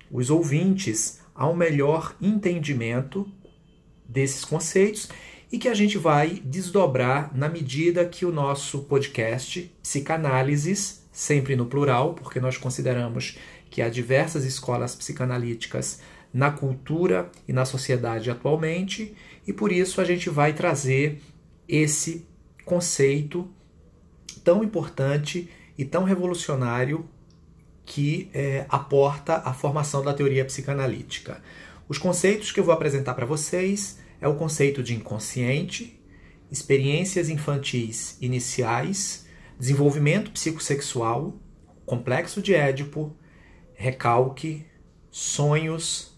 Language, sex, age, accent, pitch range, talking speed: Portuguese, male, 40-59, Brazilian, 130-170 Hz, 105 wpm